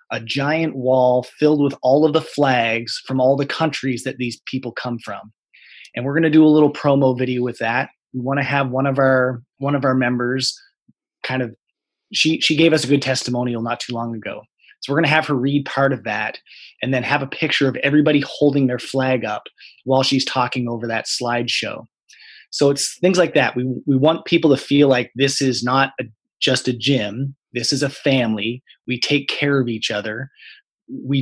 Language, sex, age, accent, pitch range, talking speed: English, male, 20-39, American, 125-145 Hz, 210 wpm